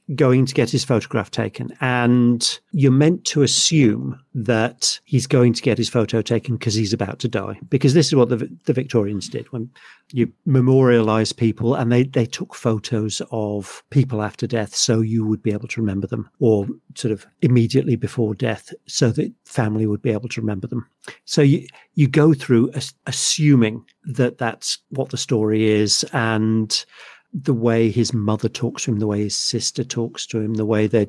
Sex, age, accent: male, 50-69, British